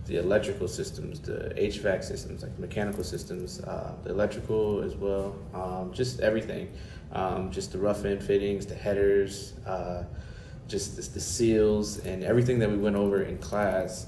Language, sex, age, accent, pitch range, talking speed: English, male, 20-39, American, 95-110 Hz, 165 wpm